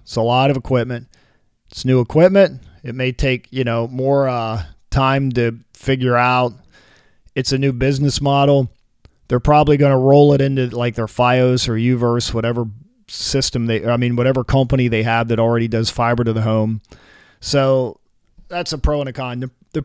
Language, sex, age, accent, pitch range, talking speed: English, male, 40-59, American, 120-145 Hz, 185 wpm